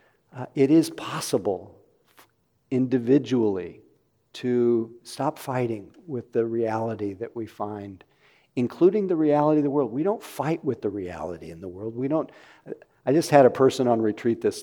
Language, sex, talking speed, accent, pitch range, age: English, male, 160 wpm, American, 115-140 Hz, 50-69